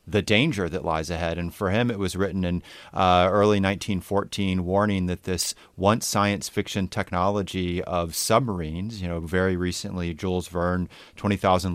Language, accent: English, American